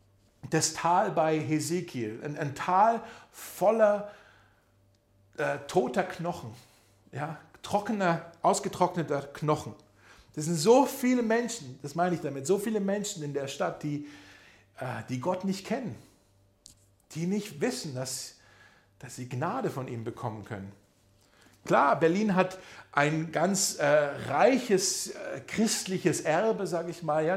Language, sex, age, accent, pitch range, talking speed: German, male, 50-69, German, 140-205 Hz, 135 wpm